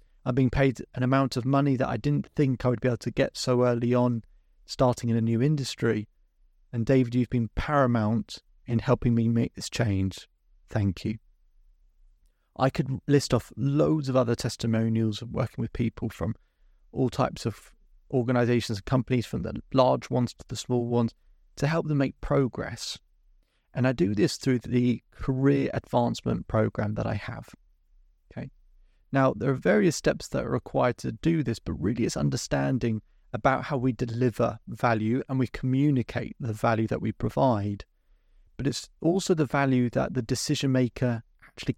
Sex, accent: male, British